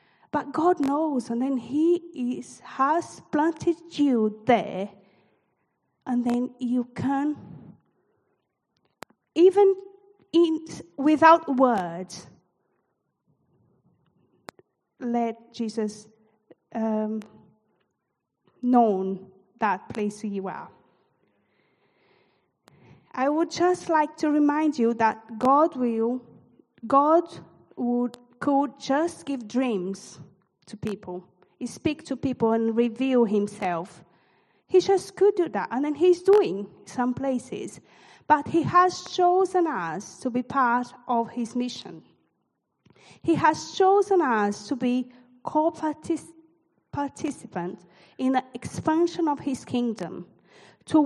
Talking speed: 105 wpm